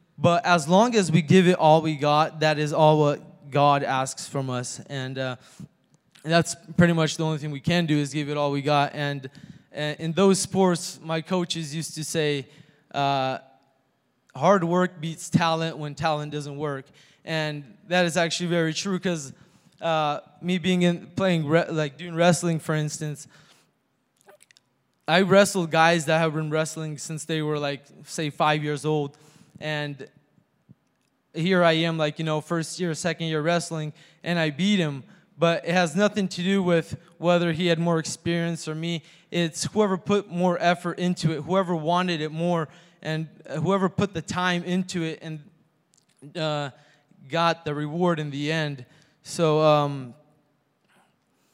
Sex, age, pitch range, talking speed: male, 20-39, 150-175 Hz, 165 wpm